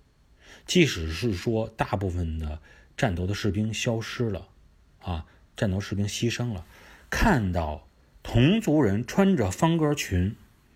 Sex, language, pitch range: male, Chinese, 85-125 Hz